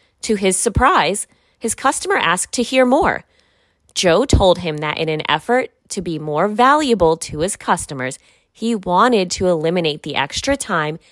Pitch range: 155-215 Hz